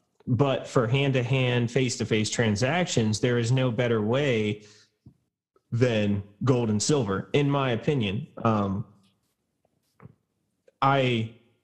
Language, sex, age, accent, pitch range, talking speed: English, male, 20-39, American, 105-125 Hz, 100 wpm